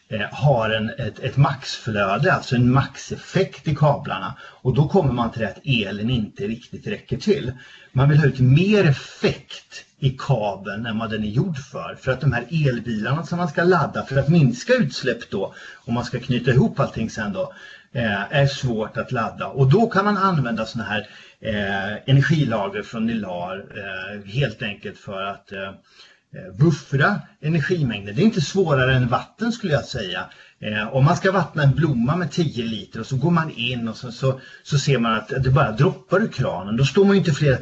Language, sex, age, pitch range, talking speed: English, male, 40-59, 110-160 Hz, 195 wpm